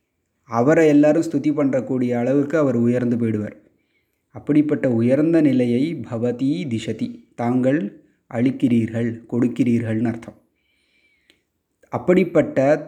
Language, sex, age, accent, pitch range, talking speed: Tamil, male, 30-49, native, 120-145 Hz, 85 wpm